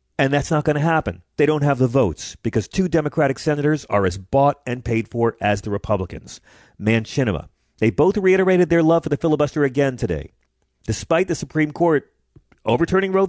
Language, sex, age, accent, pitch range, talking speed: English, male, 40-59, American, 100-150 Hz, 185 wpm